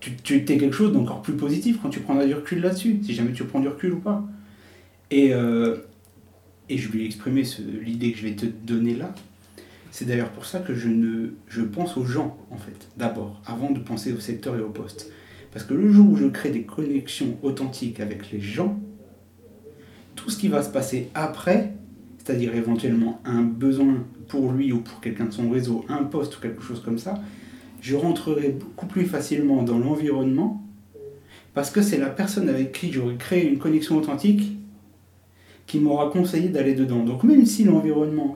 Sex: male